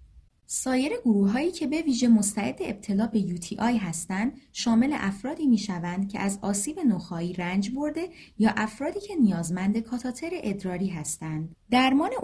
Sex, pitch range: female, 185-255 Hz